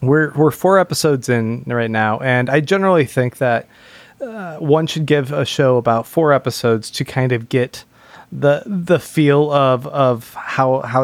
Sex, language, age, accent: male, English, 20-39, American